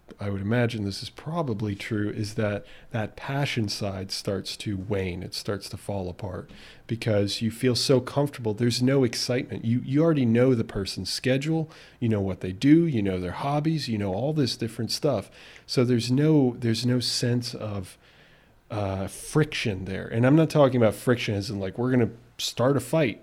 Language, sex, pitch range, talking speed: English, male, 105-125 Hz, 195 wpm